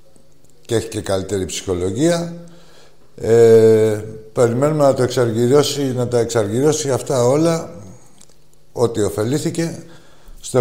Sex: male